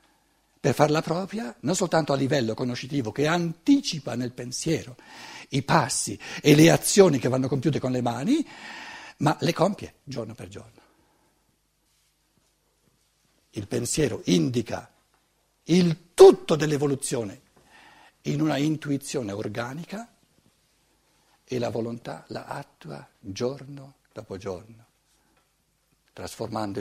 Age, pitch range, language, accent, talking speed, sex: 60-79, 110-145 Hz, Italian, native, 105 wpm, male